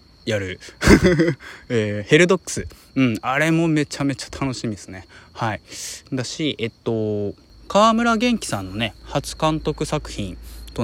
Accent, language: native, Japanese